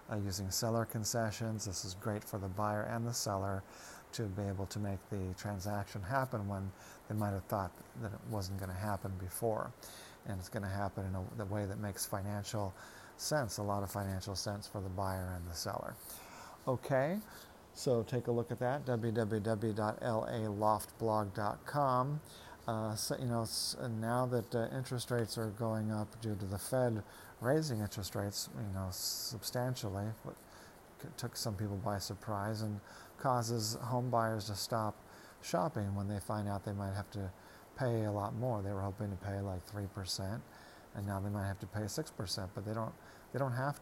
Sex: male